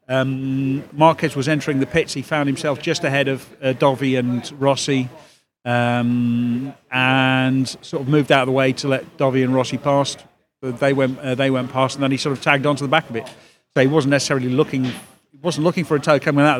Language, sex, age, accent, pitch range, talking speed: English, male, 40-59, British, 130-150 Hz, 225 wpm